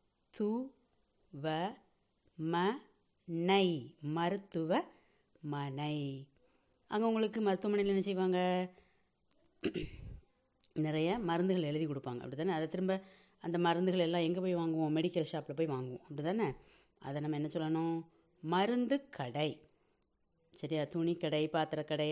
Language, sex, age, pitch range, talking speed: Tamil, female, 30-49, 150-190 Hz, 95 wpm